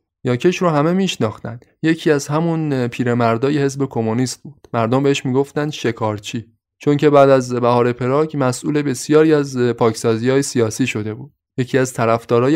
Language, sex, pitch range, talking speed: Persian, male, 115-150 Hz, 155 wpm